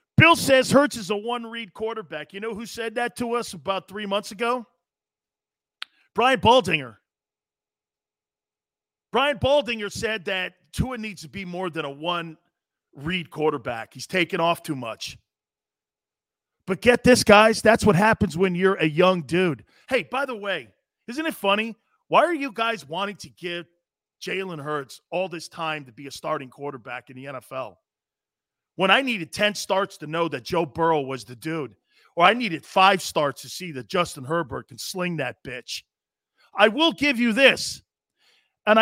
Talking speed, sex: 175 wpm, male